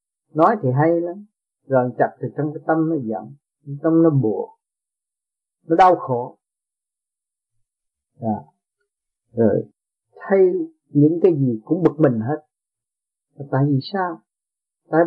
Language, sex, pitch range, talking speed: Vietnamese, male, 130-180 Hz, 125 wpm